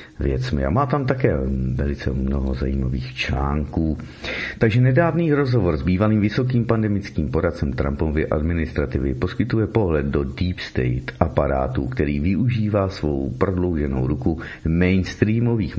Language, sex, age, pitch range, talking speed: Czech, male, 50-69, 65-105 Hz, 120 wpm